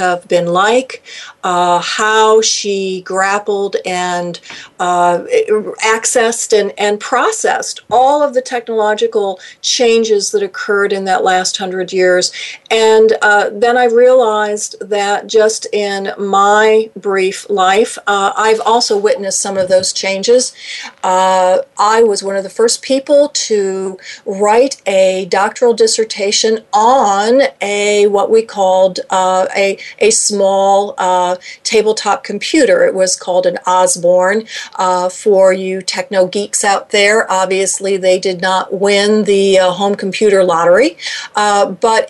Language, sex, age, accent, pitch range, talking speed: English, female, 50-69, American, 190-230 Hz, 135 wpm